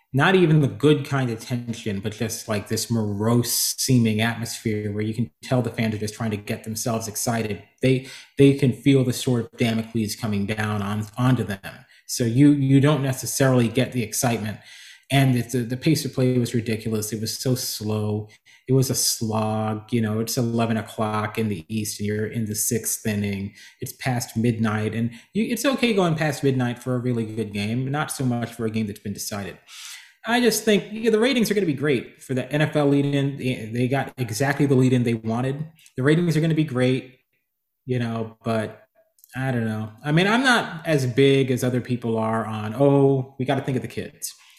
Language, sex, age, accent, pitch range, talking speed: English, male, 30-49, American, 110-140 Hz, 215 wpm